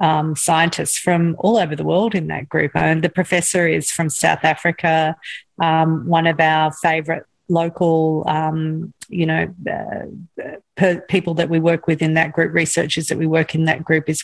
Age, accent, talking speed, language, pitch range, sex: 40-59, Australian, 195 wpm, English, 165-200 Hz, female